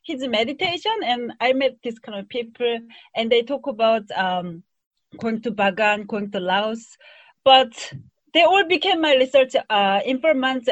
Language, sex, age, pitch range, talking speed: English, female, 30-49, 225-300 Hz, 155 wpm